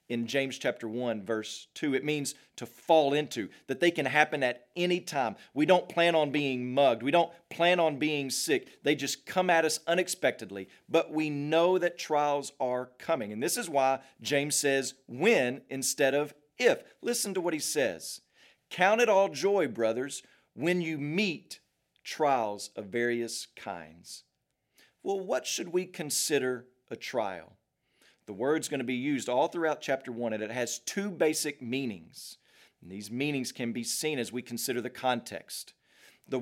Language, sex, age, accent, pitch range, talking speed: English, male, 40-59, American, 125-165 Hz, 170 wpm